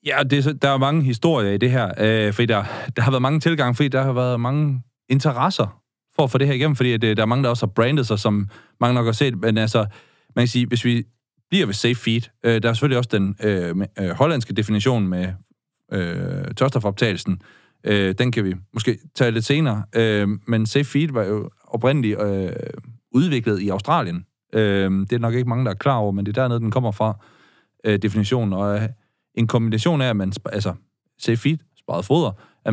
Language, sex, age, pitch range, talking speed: Danish, male, 30-49, 105-130 Hz, 215 wpm